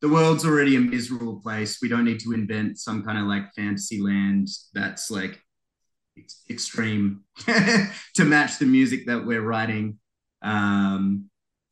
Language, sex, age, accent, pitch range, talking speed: English, male, 20-39, Australian, 100-135 Hz, 145 wpm